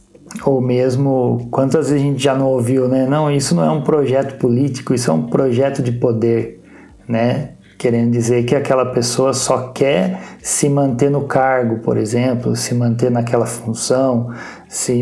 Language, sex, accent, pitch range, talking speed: Portuguese, male, Brazilian, 120-145 Hz, 170 wpm